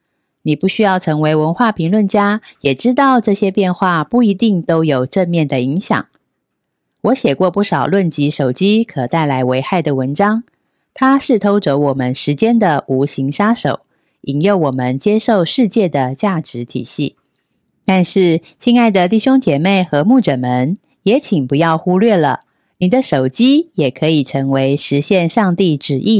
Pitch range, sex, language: 140-210 Hz, female, Chinese